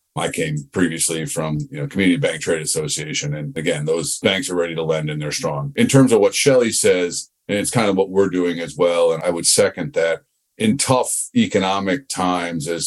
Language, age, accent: English, 50-69, American